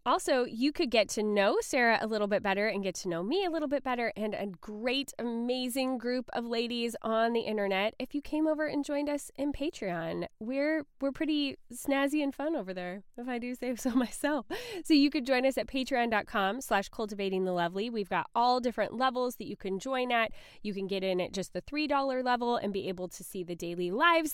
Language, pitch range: English, 200-275 Hz